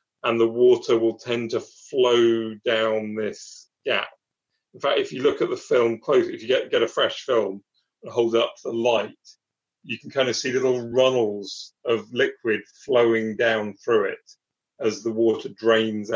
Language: English